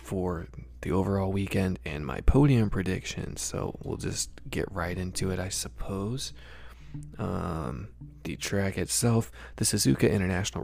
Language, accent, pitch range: English, American, 75-105 Hz